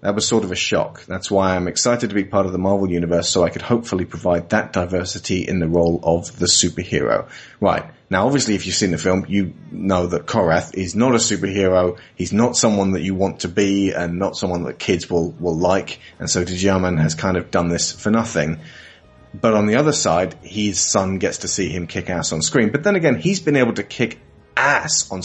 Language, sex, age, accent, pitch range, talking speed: English, male, 30-49, British, 90-105 Hz, 230 wpm